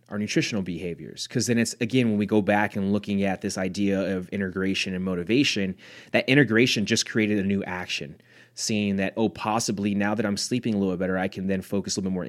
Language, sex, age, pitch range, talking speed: English, male, 30-49, 100-115 Hz, 230 wpm